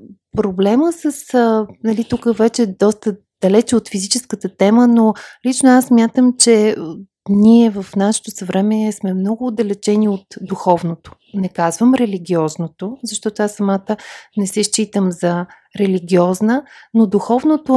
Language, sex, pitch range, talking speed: Bulgarian, female, 175-215 Hz, 125 wpm